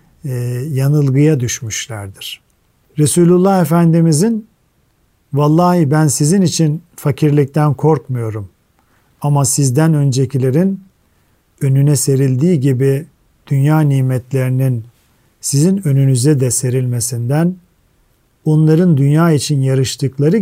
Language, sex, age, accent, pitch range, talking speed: Turkish, male, 50-69, native, 130-165 Hz, 75 wpm